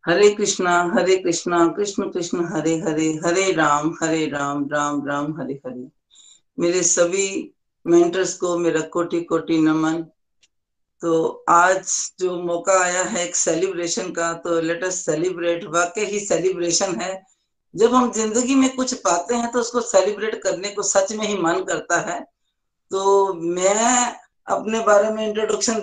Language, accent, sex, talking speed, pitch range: Hindi, native, female, 150 wpm, 175-225 Hz